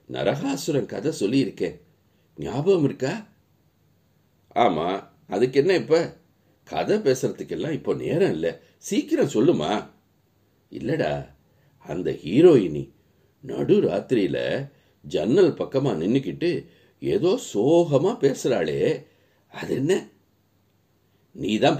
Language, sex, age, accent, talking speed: Tamil, male, 60-79, native, 85 wpm